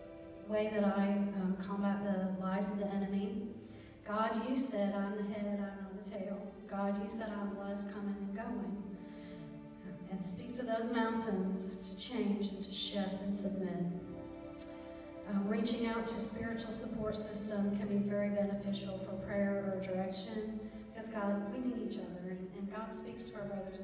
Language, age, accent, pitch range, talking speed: English, 40-59, American, 195-220 Hz, 175 wpm